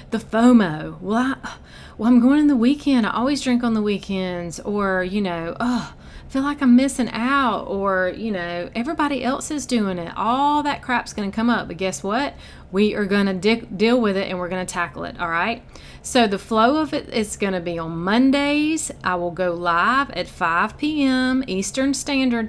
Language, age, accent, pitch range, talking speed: English, 30-49, American, 185-235 Hz, 205 wpm